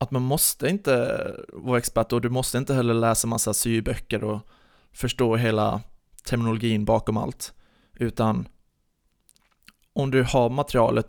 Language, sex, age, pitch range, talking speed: Swedish, male, 20-39, 110-130 Hz, 140 wpm